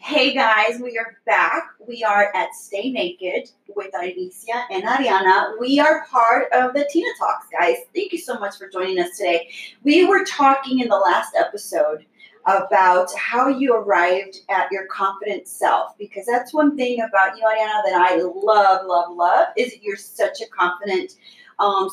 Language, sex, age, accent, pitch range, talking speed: English, female, 30-49, American, 190-285 Hz, 175 wpm